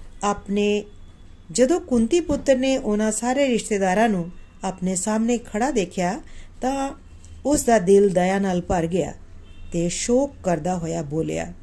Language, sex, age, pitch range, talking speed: Punjabi, female, 40-59, 175-255 Hz, 135 wpm